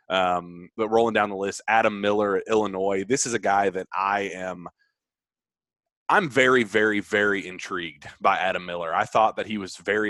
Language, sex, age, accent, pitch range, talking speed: English, male, 30-49, American, 95-115 Hz, 180 wpm